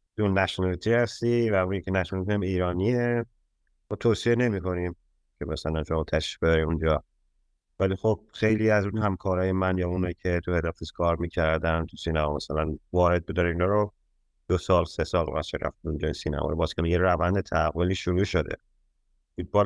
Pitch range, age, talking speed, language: 85-105 Hz, 30-49, 160 wpm, Persian